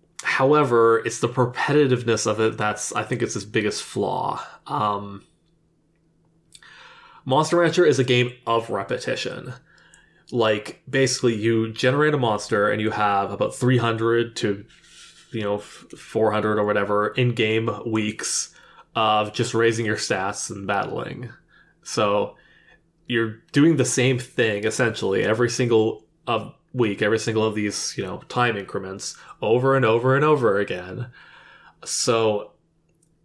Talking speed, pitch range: 135 wpm, 110-145 Hz